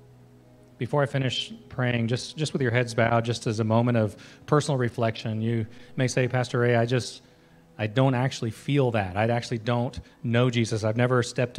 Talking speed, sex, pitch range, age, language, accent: 190 wpm, male, 110-125 Hz, 30-49, English, American